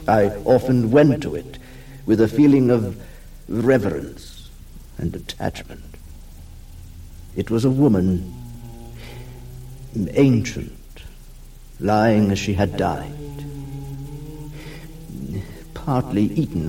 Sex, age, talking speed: male, 60-79, 85 wpm